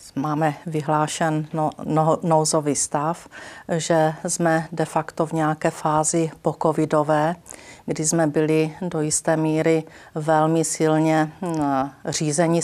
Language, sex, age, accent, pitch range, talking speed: Czech, female, 40-59, native, 155-170 Hz, 110 wpm